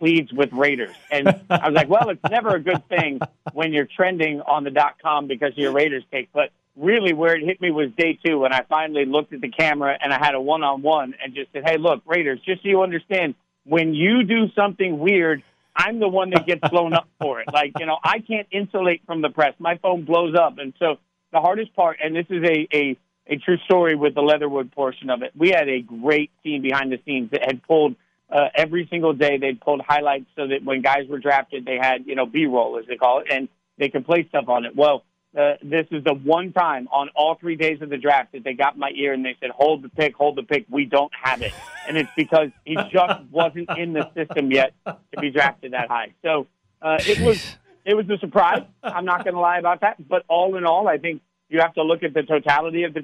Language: English